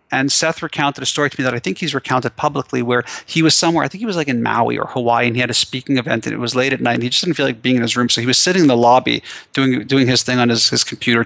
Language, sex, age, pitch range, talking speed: English, male, 30-49, 125-145 Hz, 335 wpm